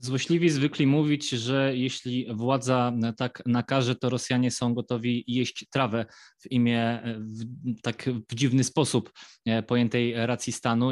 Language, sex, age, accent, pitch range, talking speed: Polish, male, 20-39, native, 115-135 Hz, 125 wpm